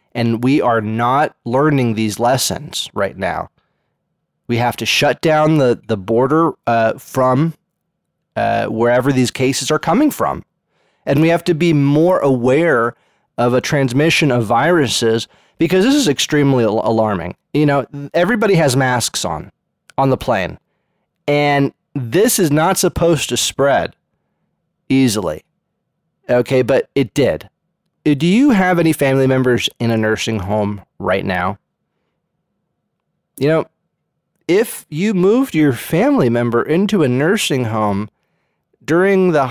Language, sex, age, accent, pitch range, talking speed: English, male, 30-49, American, 115-160 Hz, 135 wpm